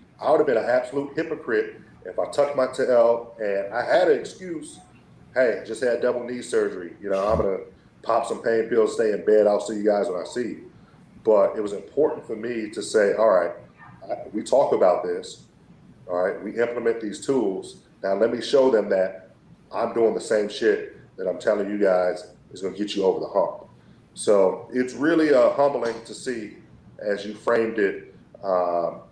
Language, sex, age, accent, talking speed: English, male, 40-59, American, 205 wpm